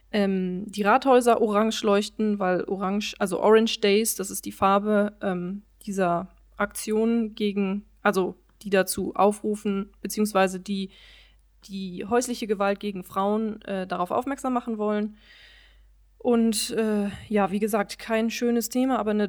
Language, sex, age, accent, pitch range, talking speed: German, female, 20-39, German, 195-225 Hz, 135 wpm